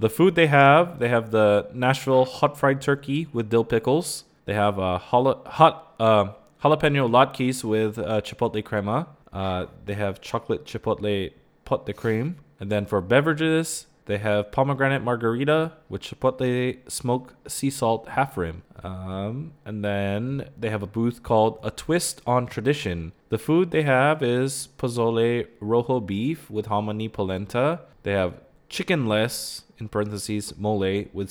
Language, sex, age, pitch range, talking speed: English, male, 20-39, 105-135 Hz, 150 wpm